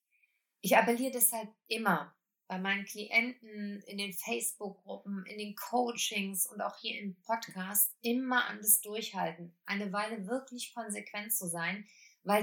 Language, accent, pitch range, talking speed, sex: German, German, 190-235 Hz, 140 wpm, female